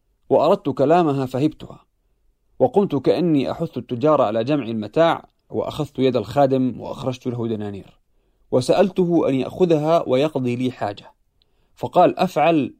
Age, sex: 40-59, male